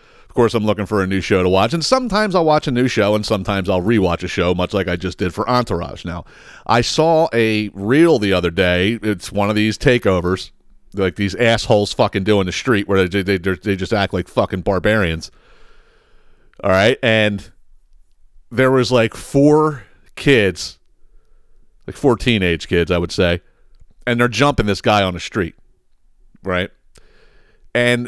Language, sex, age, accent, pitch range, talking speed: English, male, 40-59, American, 100-155 Hz, 180 wpm